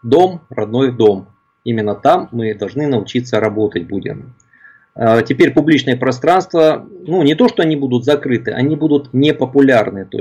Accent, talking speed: native, 140 wpm